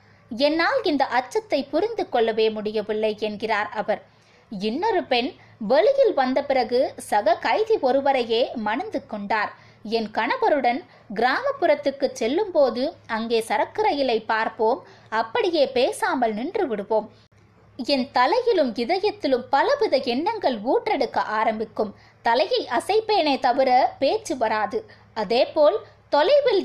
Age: 20-39